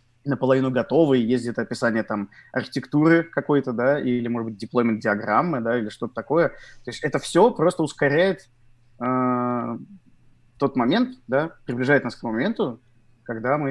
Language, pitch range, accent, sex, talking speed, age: Russian, 115-130 Hz, native, male, 150 wpm, 20-39